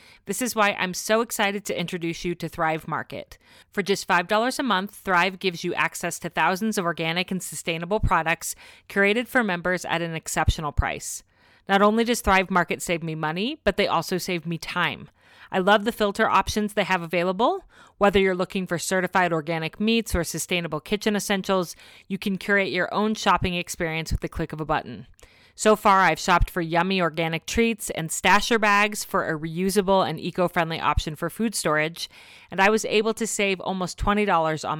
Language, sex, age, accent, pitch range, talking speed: English, female, 30-49, American, 165-205 Hz, 190 wpm